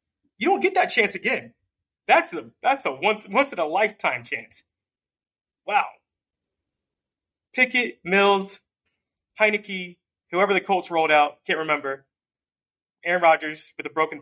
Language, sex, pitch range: English, male, 115-175 Hz